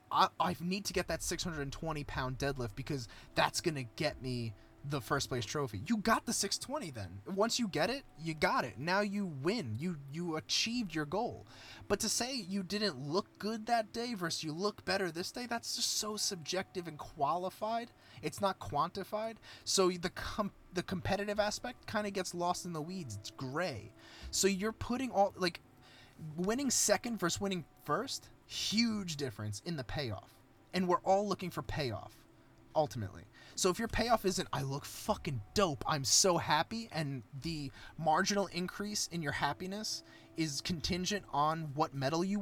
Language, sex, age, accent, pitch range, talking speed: English, male, 20-39, American, 145-205 Hz, 175 wpm